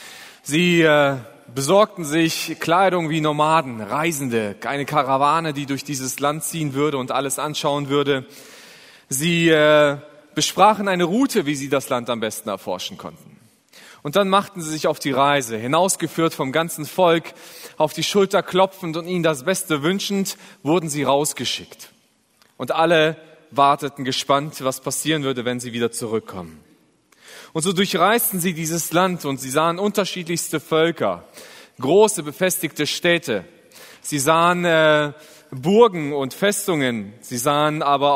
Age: 30-49